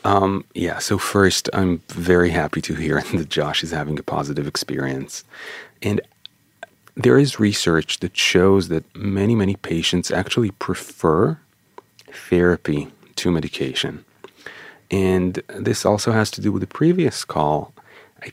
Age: 30-49